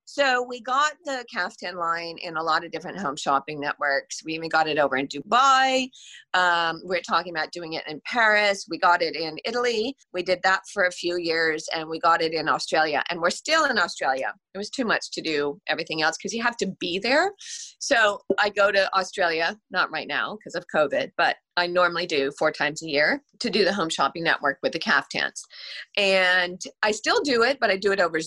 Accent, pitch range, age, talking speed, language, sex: American, 160-210 Hz, 30-49, 220 wpm, English, female